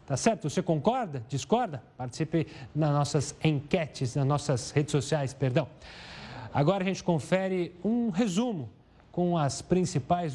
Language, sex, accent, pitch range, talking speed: Portuguese, male, Brazilian, 140-195 Hz, 135 wpm